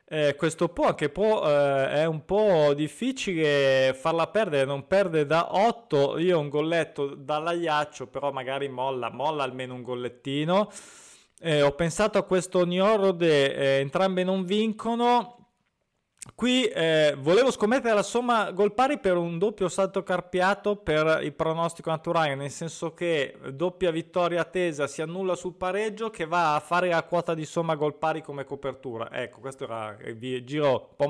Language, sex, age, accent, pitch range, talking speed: Italian, male, 20-39, native, 135-180 Hz, 160 wpm